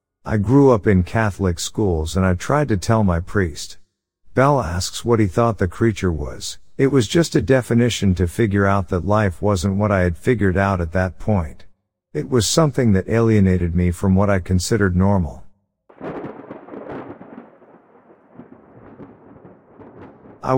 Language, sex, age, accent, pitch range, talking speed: English, male, 50-69, American, 90-115 Hz, 150 wpm